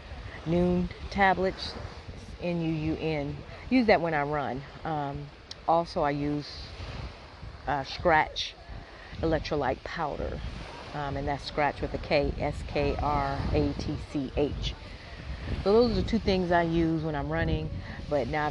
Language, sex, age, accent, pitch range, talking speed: English, female, 30-49, American, 140-165 Hz, 125 wpm